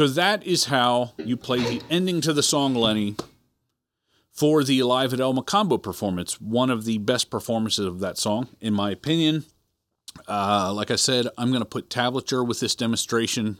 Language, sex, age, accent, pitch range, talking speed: English, male, 40-59, American, 110-140 Hz, 185 wpm